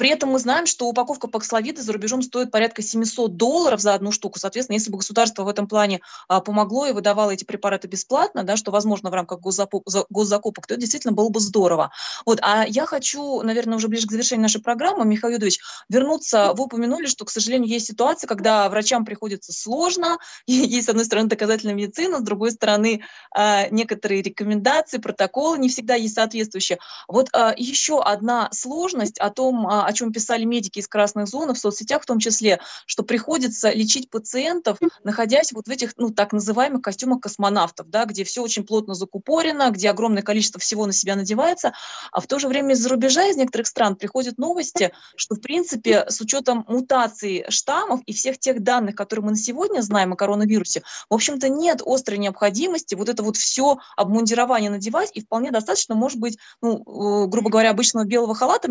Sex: female